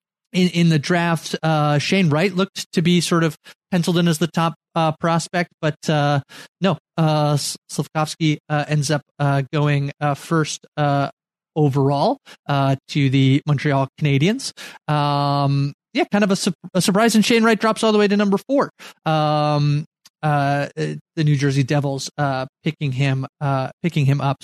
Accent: American